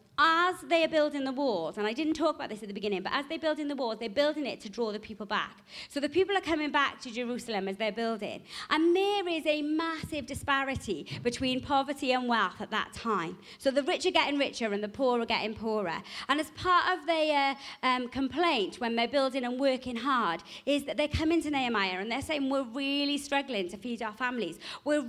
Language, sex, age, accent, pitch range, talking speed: English, female, 40-59, British, 225-295 Hz, 225 wpm